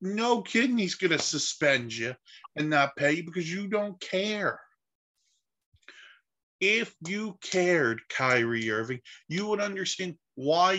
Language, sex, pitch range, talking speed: English, male, 125-165 Hz, 135 wpm